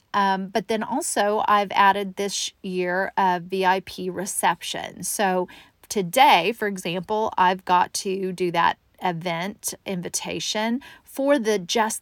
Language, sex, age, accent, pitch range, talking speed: English, female, 40-59, American, 190-220 Hz, 125 wpm